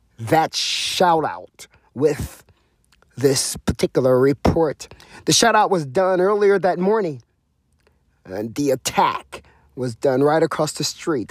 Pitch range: 115-160 Hz